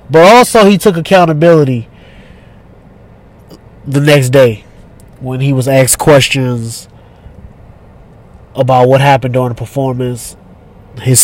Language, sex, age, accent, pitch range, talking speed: English, male, 20-39, American, 115-155 Hz, 105 wpm